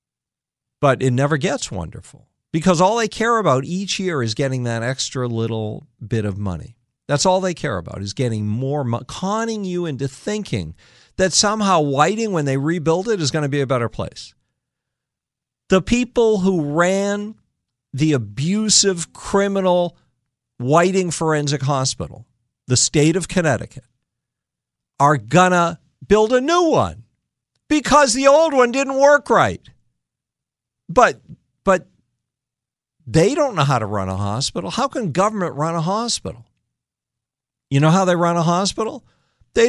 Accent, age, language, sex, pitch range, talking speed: American, 50-69, English, male, 130-205 Hz, 150 wpm